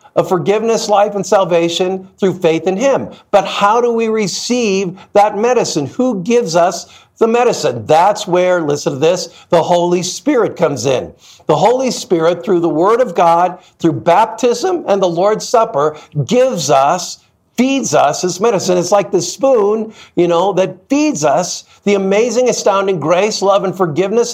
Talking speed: 165 wpm